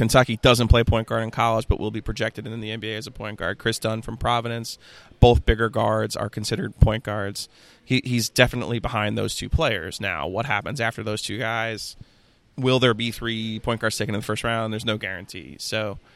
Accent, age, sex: American, 20-39, male